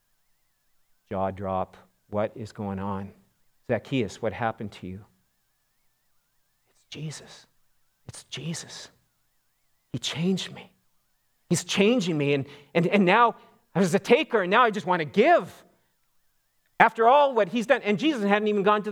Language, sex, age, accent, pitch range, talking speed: English, male, 50-69, American, 115-165 Hz, 150 wpm